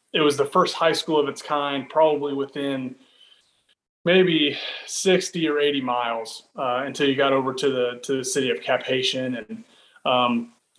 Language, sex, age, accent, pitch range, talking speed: English, male, 30-49, American, 130-150 Hz, 170 wpm